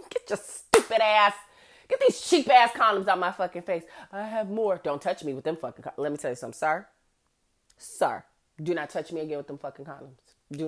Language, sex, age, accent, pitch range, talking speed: English, female, 30-49, American, 175-230 Hz, 225 wpm